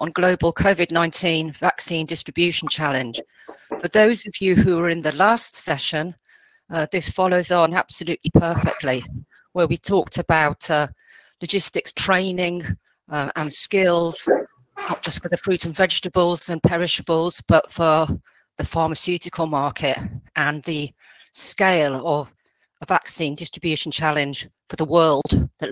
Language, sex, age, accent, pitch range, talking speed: English, female, 40-59, British, 150-180 Hz, 135 wpm